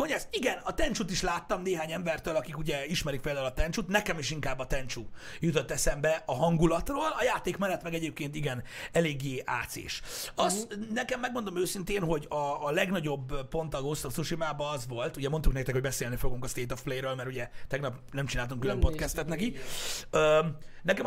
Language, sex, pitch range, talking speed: Hungarian, male, 135-170 Hz, 180 wpm